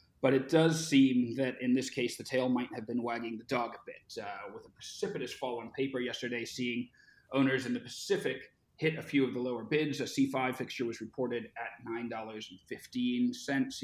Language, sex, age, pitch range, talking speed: English, male, 30-49, 120-145 Hz, 195 wpm